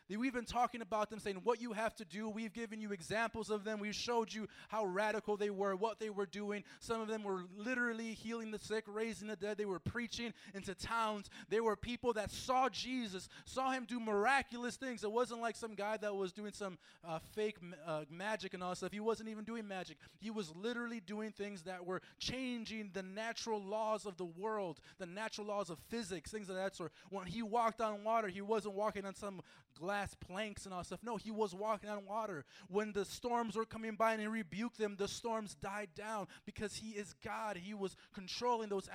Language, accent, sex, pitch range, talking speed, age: English, American, male, 200-230 Hz, 220 wpm, 20-39